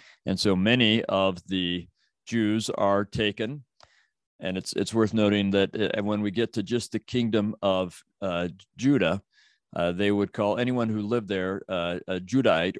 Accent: American